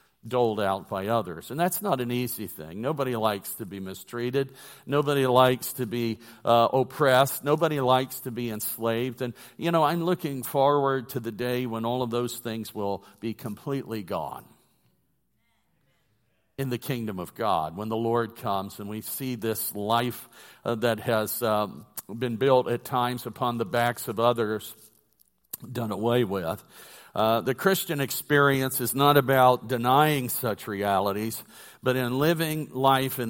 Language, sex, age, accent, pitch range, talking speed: English, male, 50-69, American, 110-135 Hz, 160 wpm